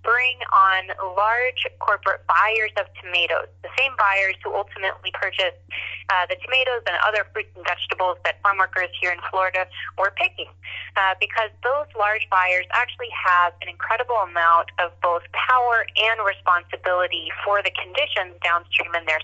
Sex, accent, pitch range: female, American, 175-215 Hz